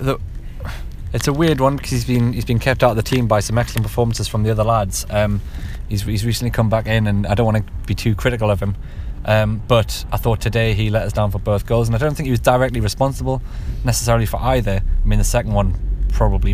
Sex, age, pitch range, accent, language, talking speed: male, 20-39, 105-120 Hz, British, English, 245 wpm